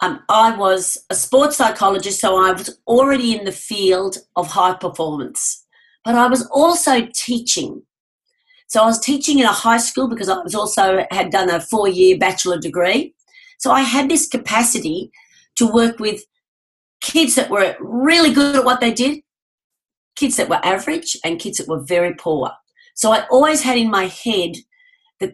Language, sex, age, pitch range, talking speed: English, female, 40-59, 195-275 Hz, 175 wpm